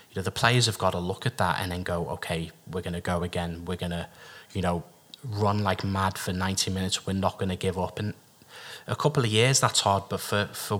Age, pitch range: 20-39, 90-105 Hz